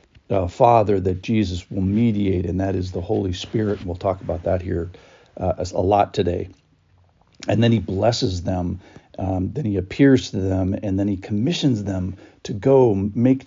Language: English